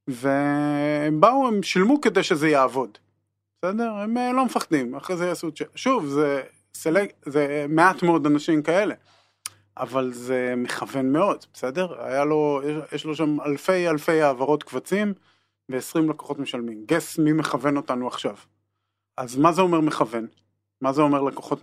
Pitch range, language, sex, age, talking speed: 130-180 Hz, Hebrew, male, 30-49, 150 wpm